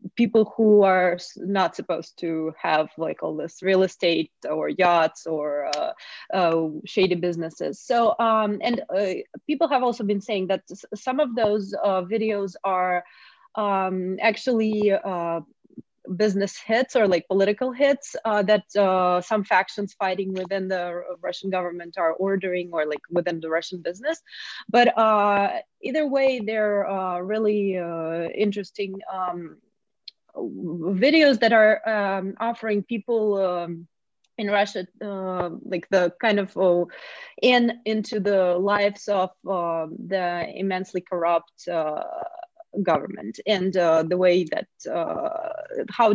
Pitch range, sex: 180-230 Hz, female